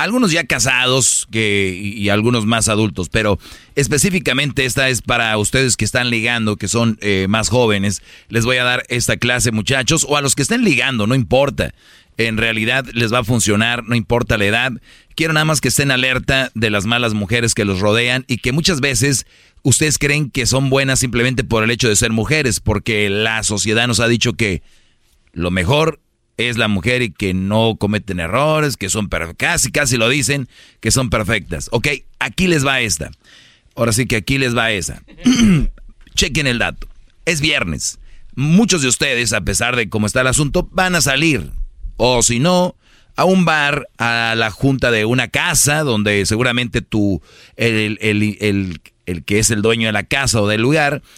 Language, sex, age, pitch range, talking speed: Spanish, male, 40-59, 110-135 Hz, 190 wpm